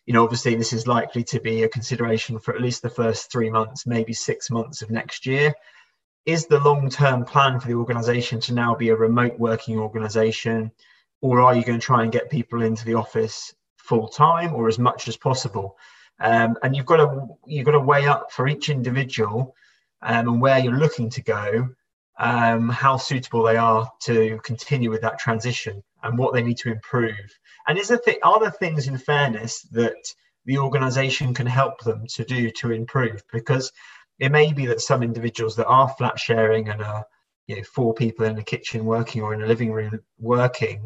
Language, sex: English, male